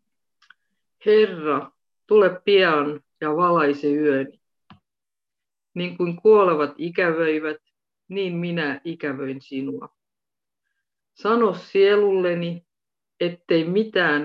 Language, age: Finnish, 50-69